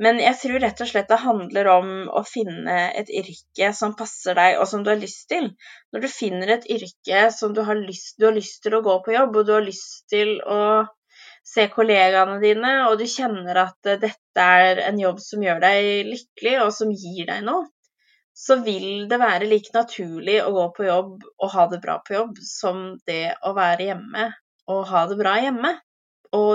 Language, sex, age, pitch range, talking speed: English, female, 20-39, 185-220 Hz, 205 wpm